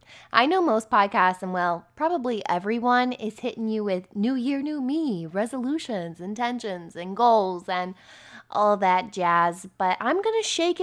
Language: English